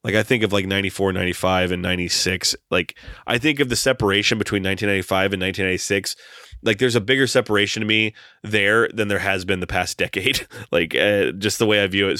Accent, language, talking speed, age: American, English, 205 wpm, 30-49